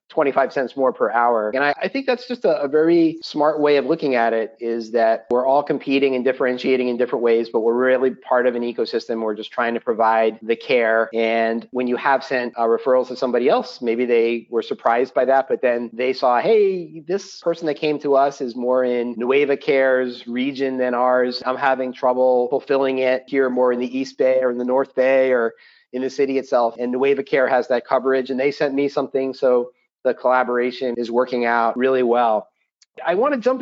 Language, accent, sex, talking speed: English, American, male, 220 wpm